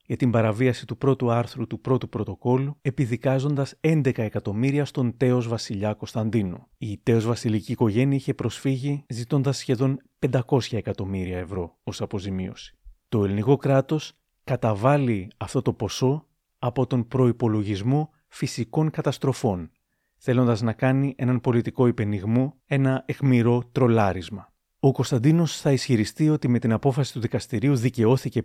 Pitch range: 110-135 Hz